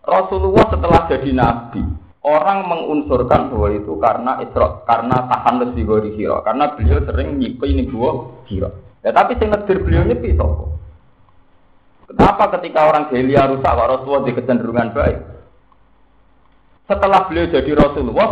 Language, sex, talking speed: Indonesian, male, 125 wpm